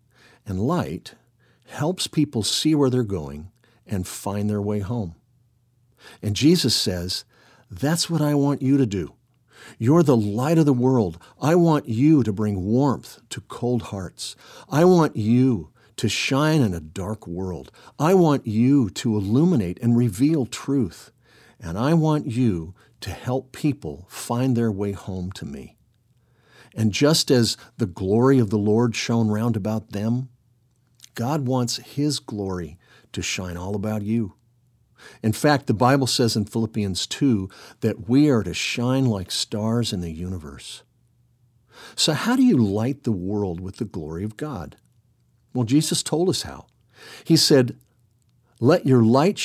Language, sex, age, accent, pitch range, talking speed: English, male, 50-69, American, 105-135 Hz, 155 wpm